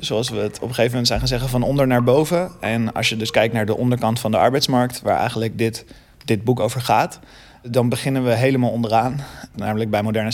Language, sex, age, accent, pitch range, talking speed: Dutch, male, 20-39, Dutch, 110-125 Hz, 230 wpm